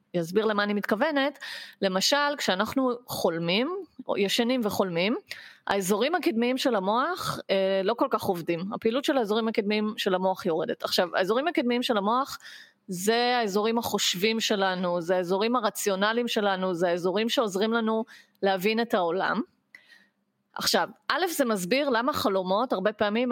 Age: 30-49